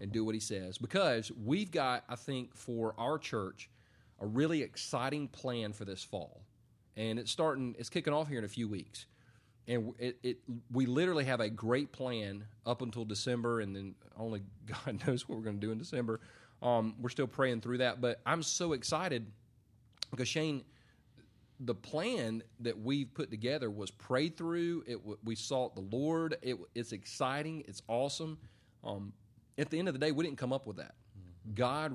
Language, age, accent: English, 30-49, American